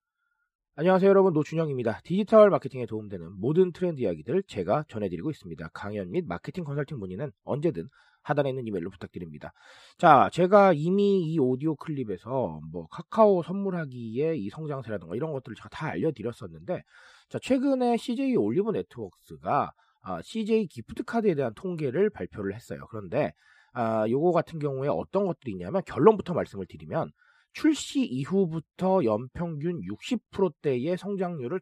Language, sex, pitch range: Korean, male, 130-215 Hz